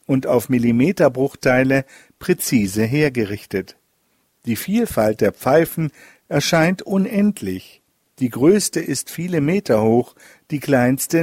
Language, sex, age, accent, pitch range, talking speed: German, male, 50-69, German, 120-155 Hz, 100 wpm